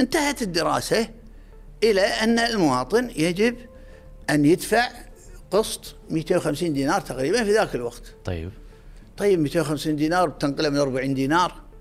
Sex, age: male, 50-69